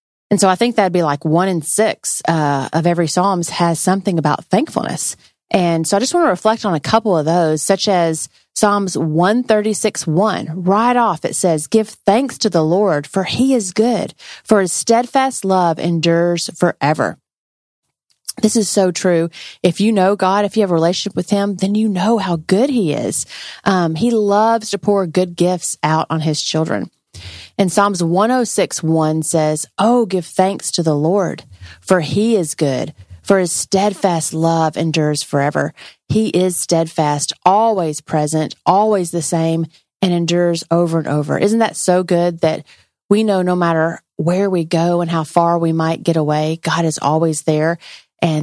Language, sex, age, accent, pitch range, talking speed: English, female, 30-49, American, 160-205 Hz, 175 wpm